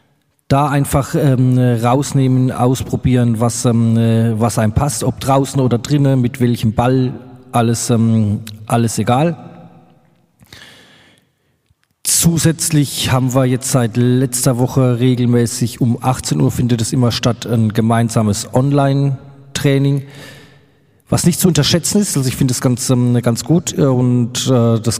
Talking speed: 130 wpm